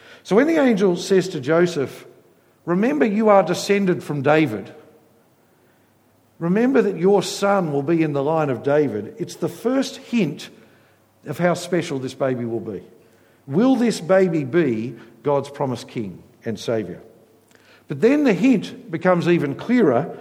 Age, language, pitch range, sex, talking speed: 60-79, English, 150-200 Hz, male, 150 wpm